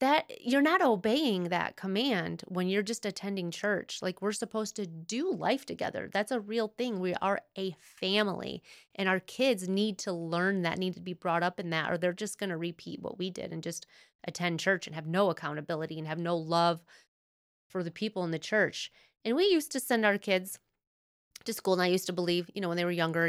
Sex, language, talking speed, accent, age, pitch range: female, English, 225 wpm, American, 30-49, 165-210 Hz